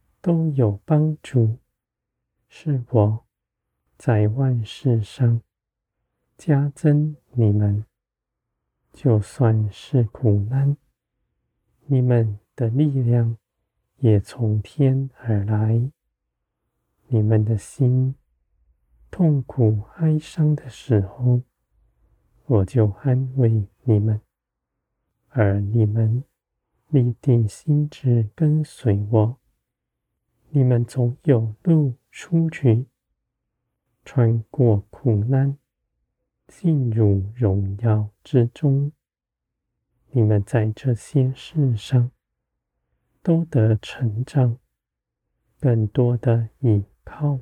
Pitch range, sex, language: 105-135 Hz, male, Chinese